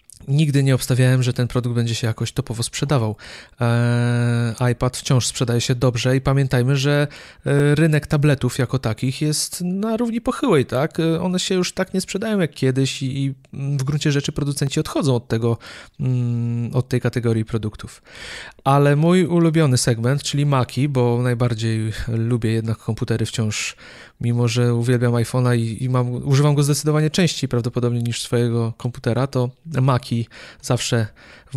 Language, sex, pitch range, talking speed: Polish, male, 120-145 Hz, 150 wpm